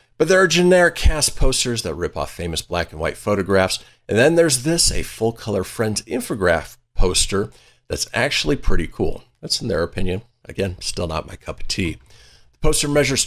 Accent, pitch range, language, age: American, 95-135 Hz, English, 50-69